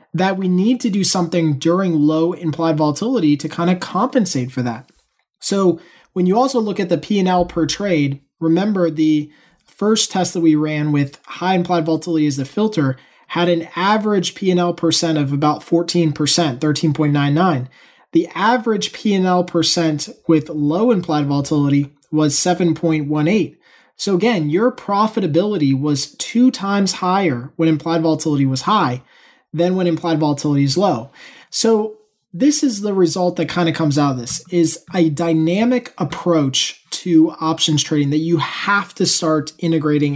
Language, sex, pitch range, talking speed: English, male, 155-190 Hz, 155 wpm